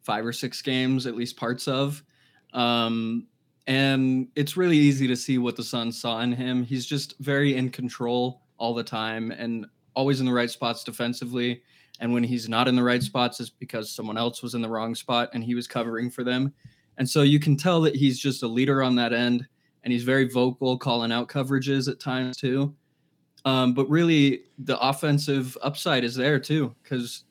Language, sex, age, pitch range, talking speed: English, male, 20-39, 120-135 Hz, 200 wpm